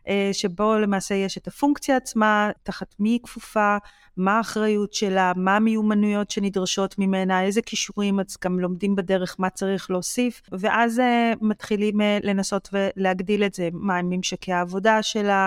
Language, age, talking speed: Hebrew, 30-49, 145 wpm